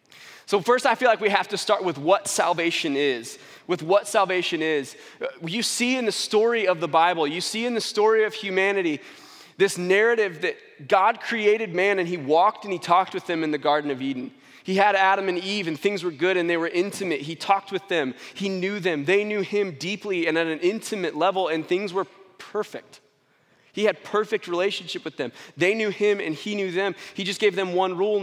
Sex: male